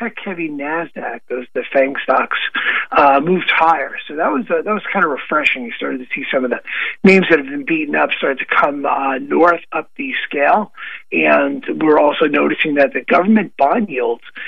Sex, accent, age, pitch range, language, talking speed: male, American, 50-69, 140-205 Hz, English, 200 wpm